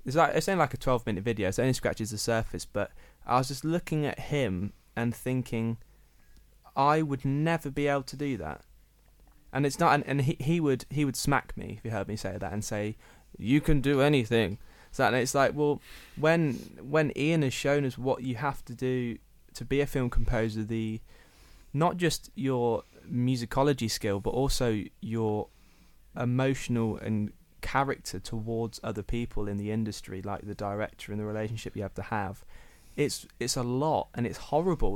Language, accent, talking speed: English, British, 190 wpm